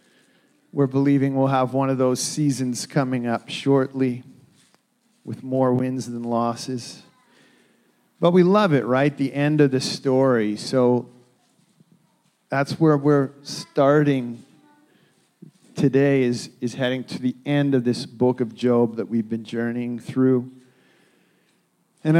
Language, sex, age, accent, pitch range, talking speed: English, male, 40-59, American, 125-150 Hz, 130 wpm